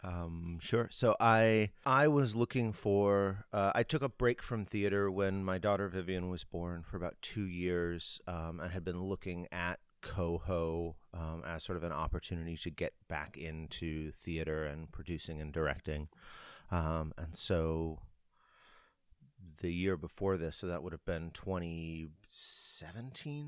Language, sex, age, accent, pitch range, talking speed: English, male, 30-49, American, 80-100 Hz, 155 wpm